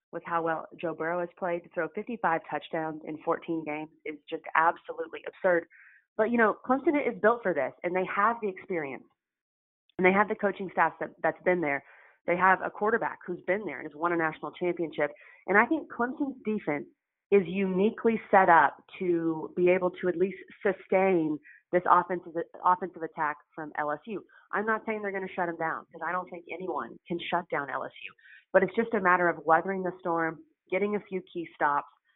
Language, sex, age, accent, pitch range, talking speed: English, female, 30-49, American, 160-190 Hz, 200 wpm